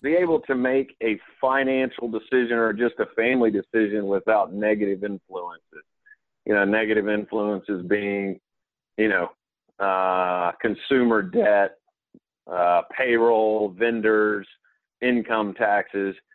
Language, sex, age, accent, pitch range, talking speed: English, male, 40-59, American, 100-115 Hz, 110 wpm